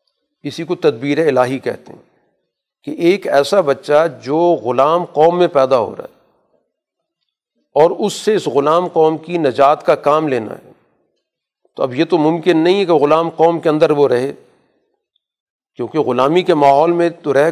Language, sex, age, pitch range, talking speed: Urdu, male, 50-69, 140-170 Hz, 175 wpm